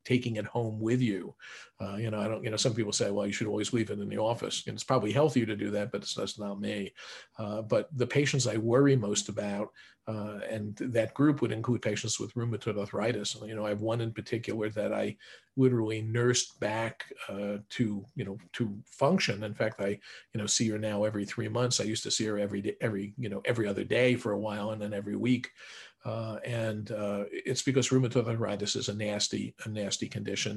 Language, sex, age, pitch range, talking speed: English, male, 50-69, 105-120 Hz, 225 wpm